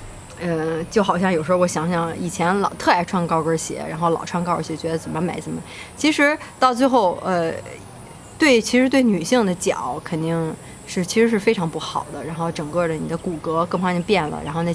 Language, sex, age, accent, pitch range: Chinese, female, 20-39, native, 165-215 Hz